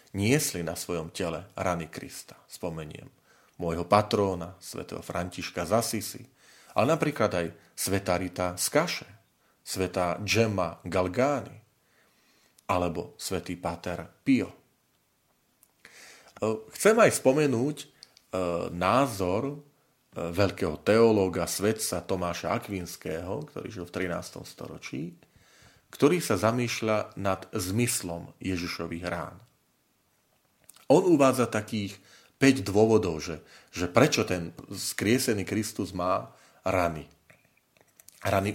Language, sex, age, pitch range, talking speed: Slovak, male, 40-59, 90-125 Hz, 95 wpm